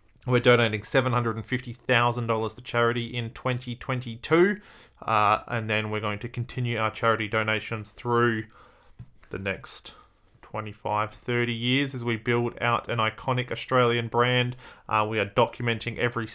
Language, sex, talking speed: English, male, 130 wpm